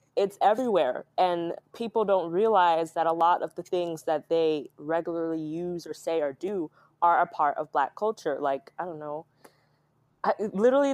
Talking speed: 170 wpm